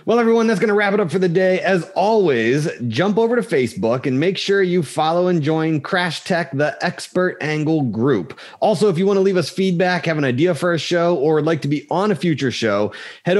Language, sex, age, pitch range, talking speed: English, male, 30-49, 135-190 Hz, 240 wpm